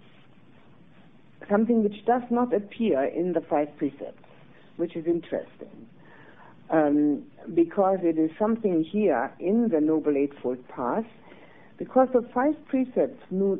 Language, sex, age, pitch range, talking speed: English, female, 60-79, 140-225 Hz, 125 wpm